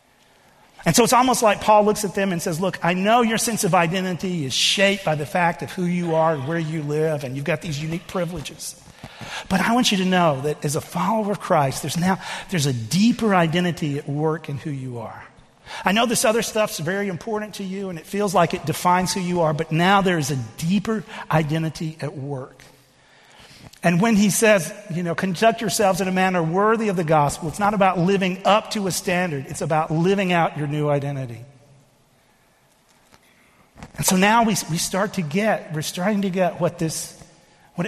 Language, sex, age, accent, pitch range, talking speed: English, male, 40-59, American, 155-195 Hz, 210 wpm